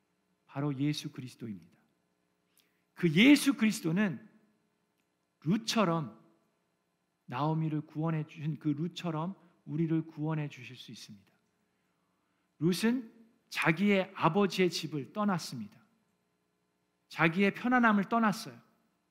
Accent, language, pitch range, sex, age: native, Korean, 155-230 Hz, male, 50-69